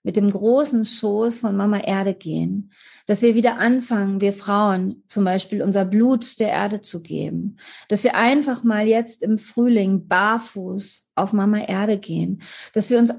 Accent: German